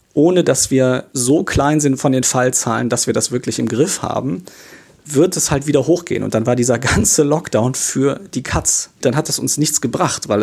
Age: 40-59